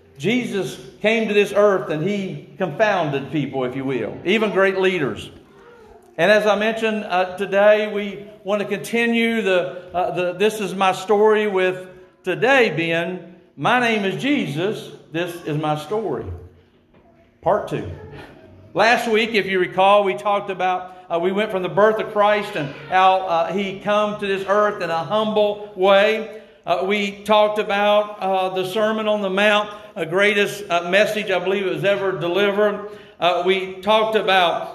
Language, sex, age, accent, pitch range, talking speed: English, male, 50-69, American, 180-210 Hz, 165 wpm